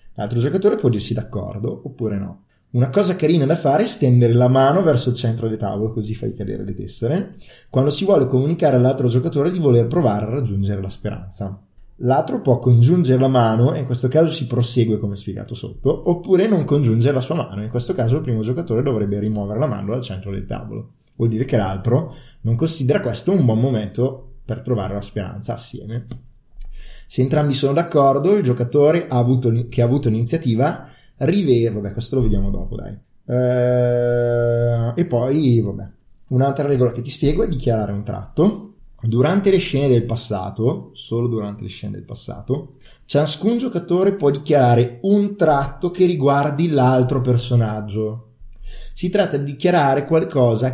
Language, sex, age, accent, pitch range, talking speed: Italian, male, 20-39, native, 115-145 Hz, 170 wpm